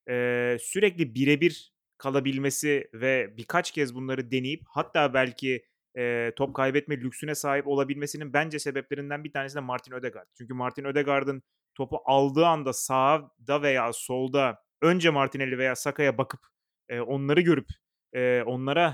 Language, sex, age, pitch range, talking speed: Turkish, male, 30-49, 125-150 Hz, 135 wpm